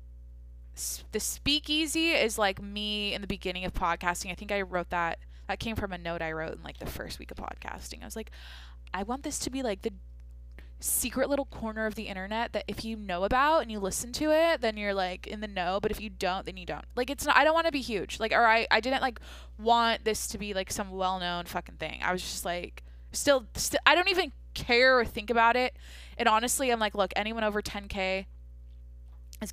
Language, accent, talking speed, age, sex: English, American, 235 wpm, 20-39, female